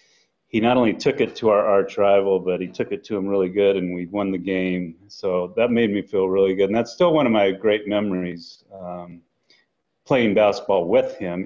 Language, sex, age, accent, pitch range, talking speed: English, male, 30-49, American, 95-115 Hz, 220 wpm